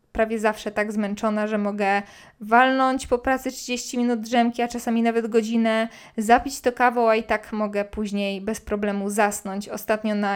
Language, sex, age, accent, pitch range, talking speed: Polish, female, 20-39, native, 205-235 Hz, 170 wpm